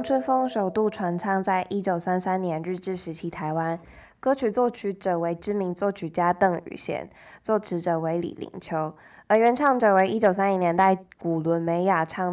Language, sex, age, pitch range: Chinese, female, 20-39, 170-195 Hz